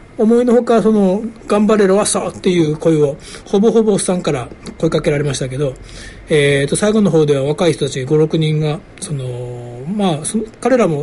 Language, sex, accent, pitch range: Japanese, male, native, 150-210 Hz